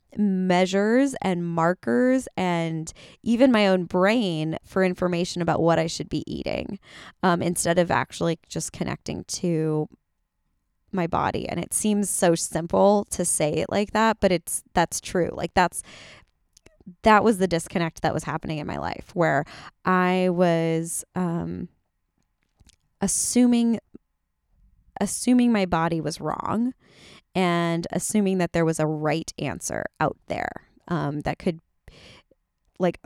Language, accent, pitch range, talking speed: English, American, 155-195 Hz, 135 wpm